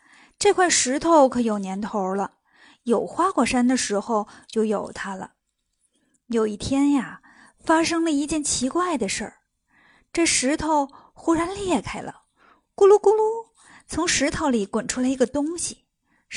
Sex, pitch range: female, 240-320 Hz